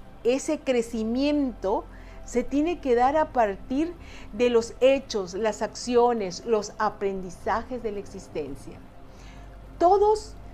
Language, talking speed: Spanish, 110 wpm